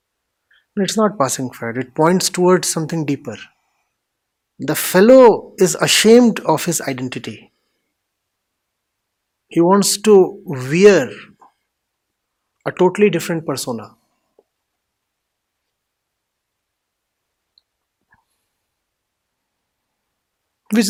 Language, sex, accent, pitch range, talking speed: English, male, Indian, 145-200 Hz, 70 wpm